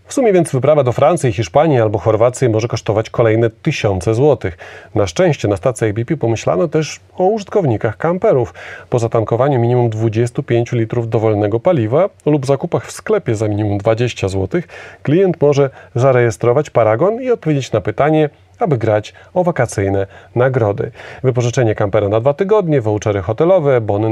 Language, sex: Polish, male